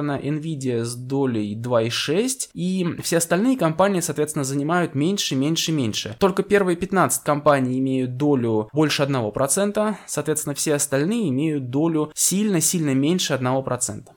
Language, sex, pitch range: Russian, male, 130-170 Hz